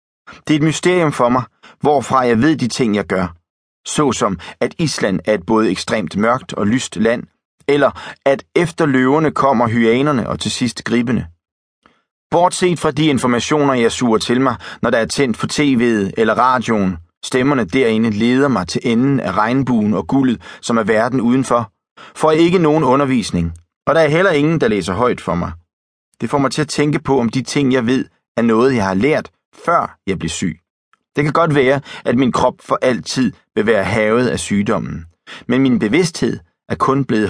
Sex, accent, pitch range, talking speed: male, native, 100-140 Hz, 195 wpm